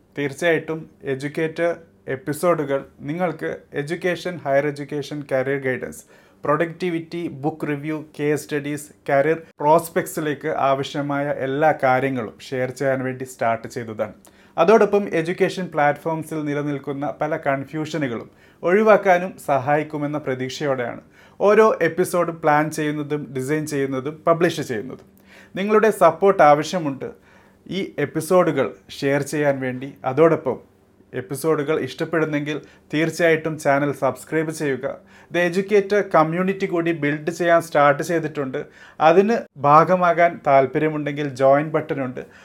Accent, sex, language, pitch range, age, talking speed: native, male, Malayalam, 135-165 Hz, 30-49, 100 wpm